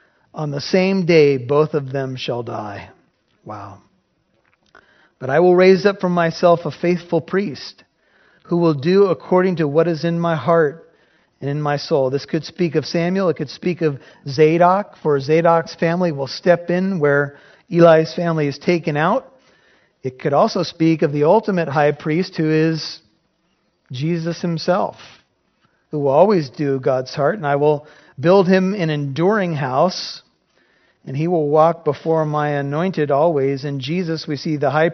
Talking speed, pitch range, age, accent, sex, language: 165 wpm, 150-180 Hz, 40-59, American, male, English